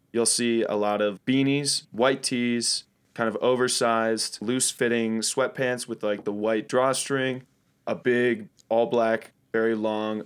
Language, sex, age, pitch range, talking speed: English, male, 20-39, 110-130 Hz, 145 wpm